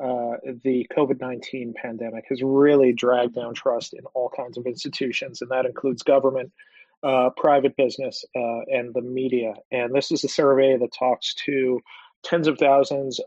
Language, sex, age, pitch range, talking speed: English, male, 40-59, 125-140 Hz, 165 wpm